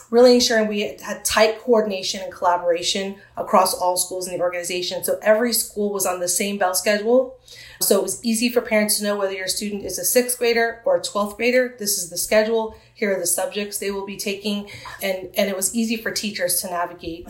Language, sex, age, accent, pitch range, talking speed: English, female, 30-49, American, 190-225 Hz, 220 wpm